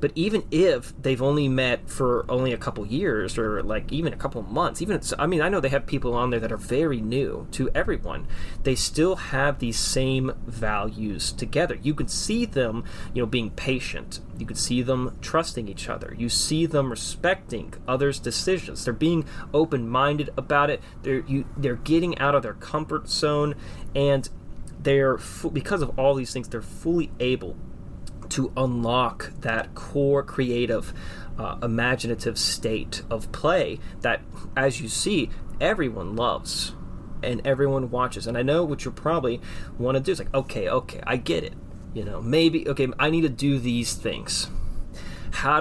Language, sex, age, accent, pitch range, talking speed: English, male, 30-49, American, 115-145 Hz, 175 wpm